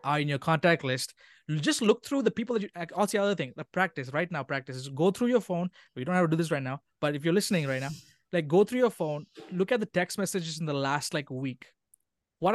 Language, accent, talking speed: English, Indian, 270 wpm